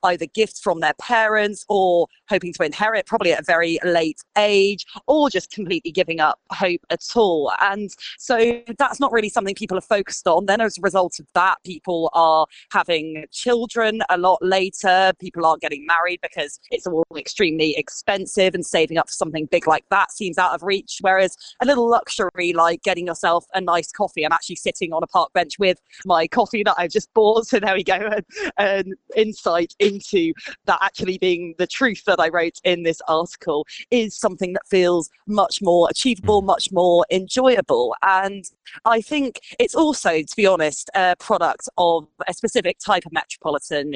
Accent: British